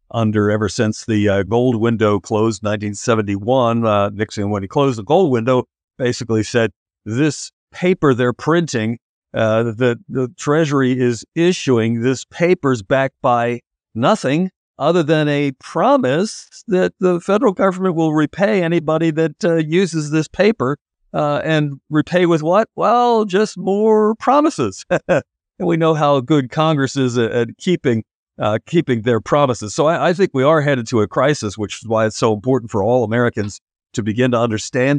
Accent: American